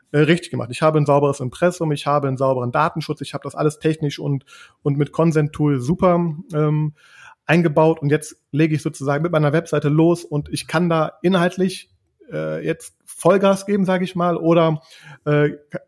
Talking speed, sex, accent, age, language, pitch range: 180 wpm, male, German, 30-49, German, 140-165 Hz